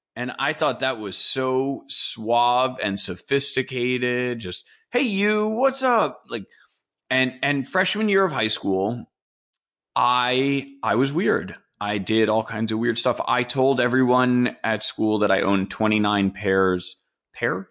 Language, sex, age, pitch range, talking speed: English, male, 30-49, 100-140 Hz, 150 wpm